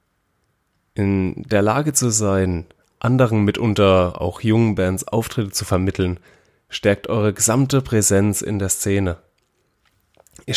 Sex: male